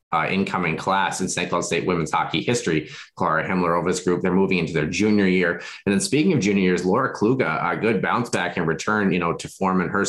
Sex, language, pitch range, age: male, English, 90-100 Hz, 20-39